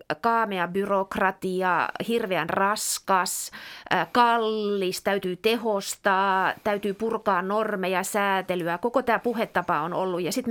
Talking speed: 110 wpm